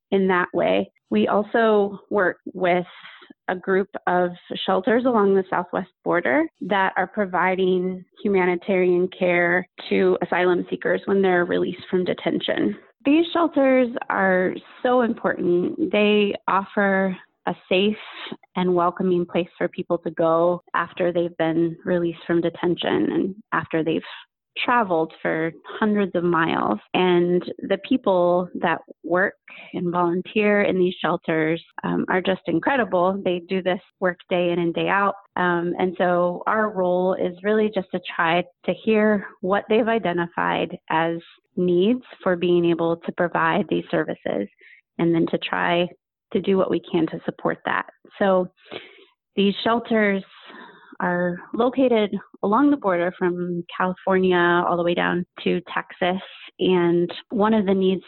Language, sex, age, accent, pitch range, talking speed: English, female, 20-39, American, 175-200 Hz, 145 wpm